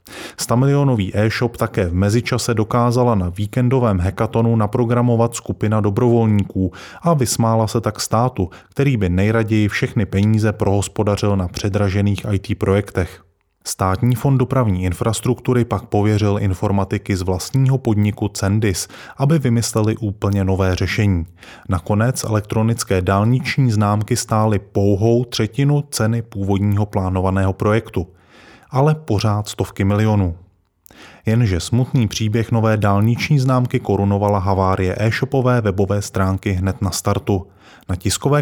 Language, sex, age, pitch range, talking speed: Czech, male, 20-39, 100-120 Hz, 115 wpm